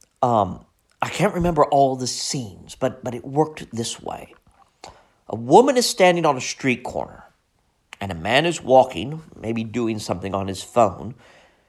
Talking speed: 165 wpm